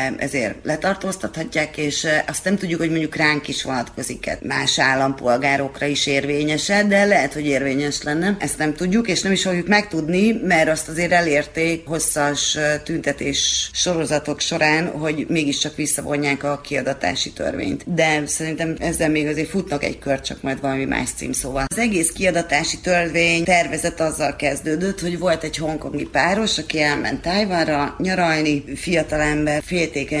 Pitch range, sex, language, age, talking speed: 145-170 Hz, female, Hungarian, 30-49, 145 wpm